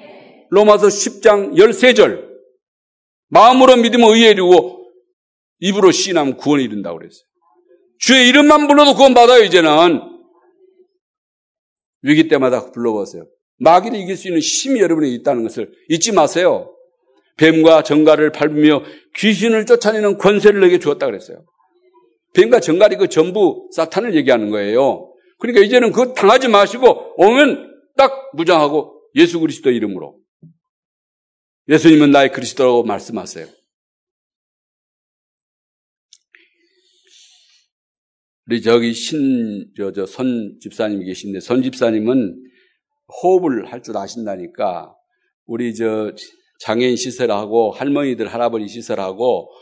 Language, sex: Korean, male